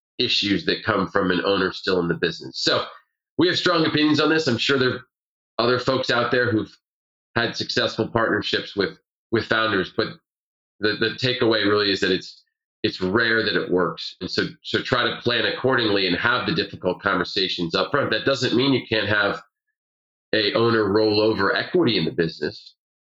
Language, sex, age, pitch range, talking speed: English, male, 30-49, 105-125 Hz, 190 wpm